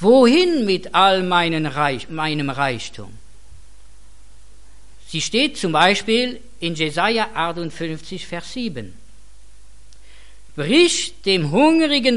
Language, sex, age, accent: Korean, female, 50-69, German